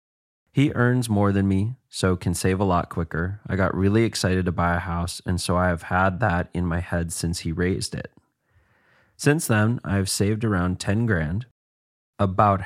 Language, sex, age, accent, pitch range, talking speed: English, male, 30-49, American, 90-110 Hz, 185 wpm